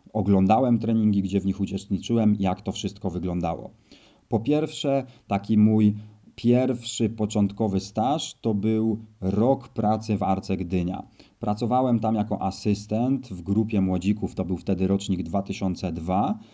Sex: male